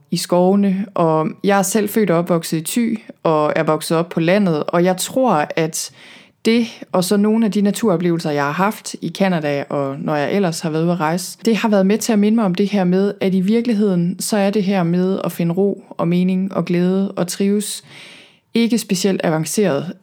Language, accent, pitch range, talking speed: Danish, native, 175-210 Hz, 220 wpm